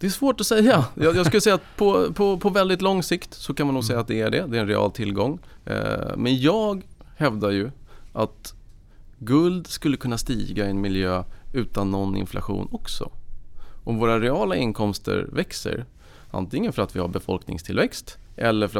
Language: Swedish